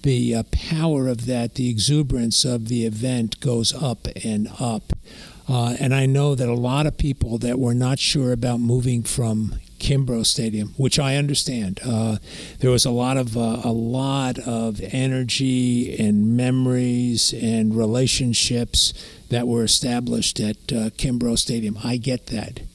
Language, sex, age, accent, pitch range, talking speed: English, male, 50-69, American, 115-130 Hz, 160 wpm